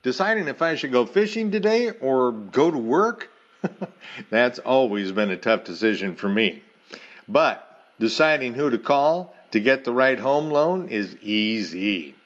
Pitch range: 115-165 Hz